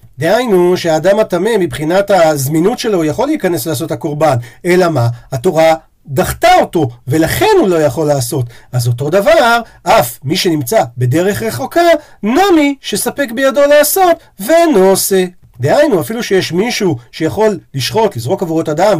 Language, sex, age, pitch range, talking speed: Hebrew, male, 50-69, 160-265 Hz, 140 wpm